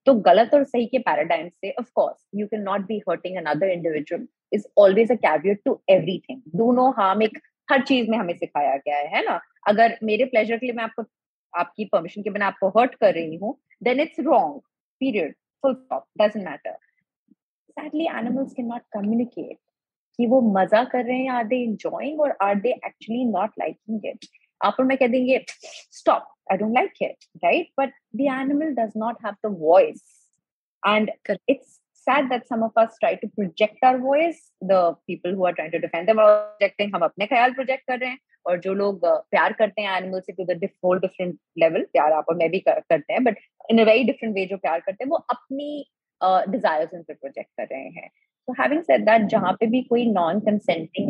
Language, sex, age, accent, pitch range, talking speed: Hindi, female, 30-49, native, 190-255 Hz, 190 wpm